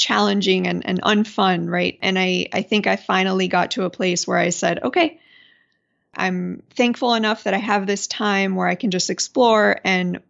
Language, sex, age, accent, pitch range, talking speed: English, female, 20-39, American, 180-215 Hz, 190 wpm